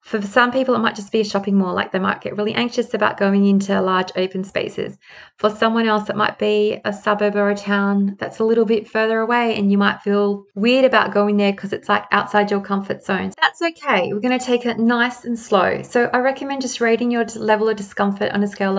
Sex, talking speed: female, 245 wpm